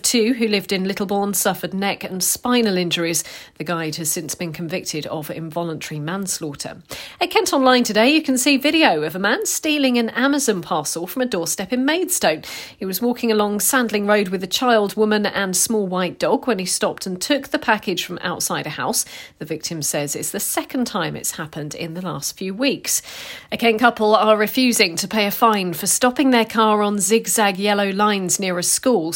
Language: English